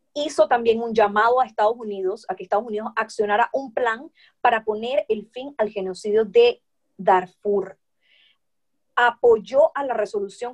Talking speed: 150 wpm